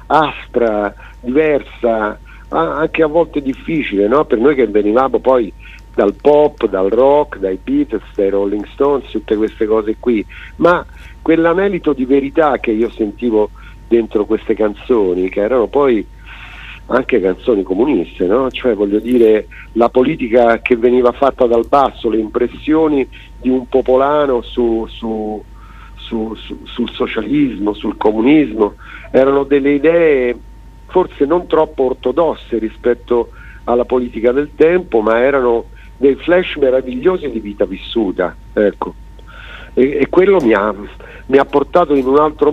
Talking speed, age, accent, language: 135 wpm, 50-69, native, Italian